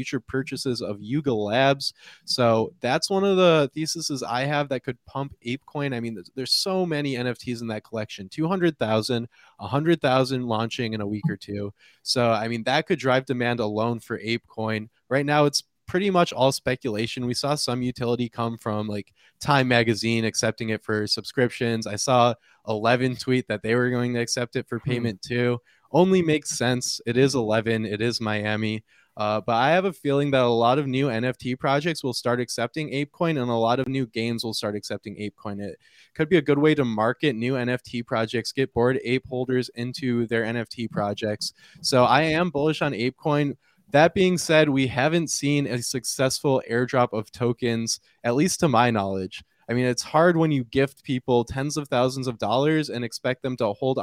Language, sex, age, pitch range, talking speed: English, male, 20-39, 115-140 Hz, 190 wpm